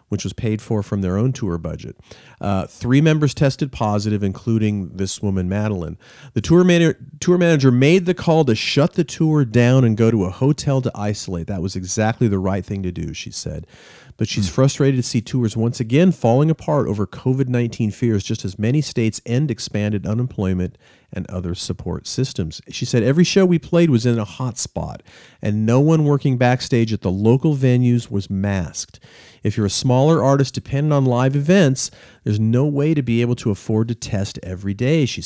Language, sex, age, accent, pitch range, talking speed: English, male, 40-59, American, 105-135 Hz, 195 wpm